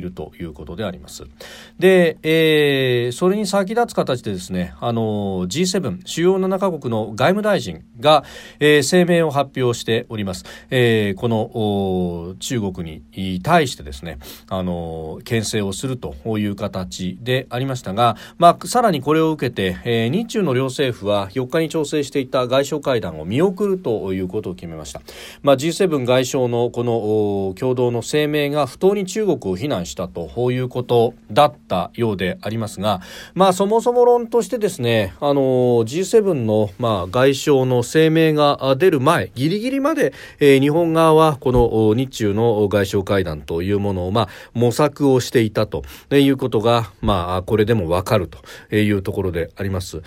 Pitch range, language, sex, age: 100-155 Hz, Japanese, male, 40-59